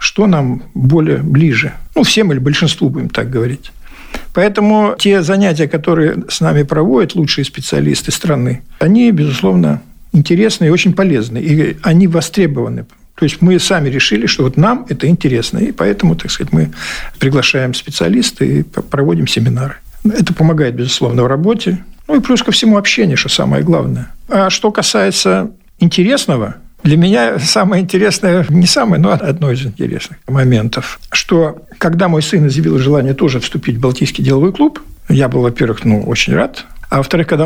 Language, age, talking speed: Russian, 60-79, 160 wpm